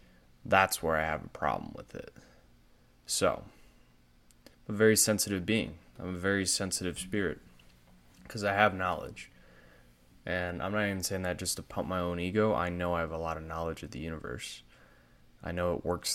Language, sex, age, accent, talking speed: English, male, 20-39, American, 185 wpm